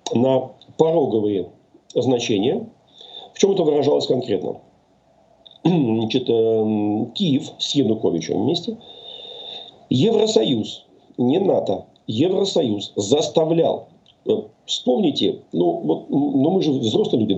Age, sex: 50-69, male